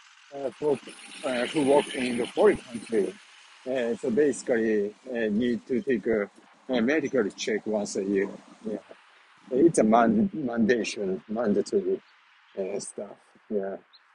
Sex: male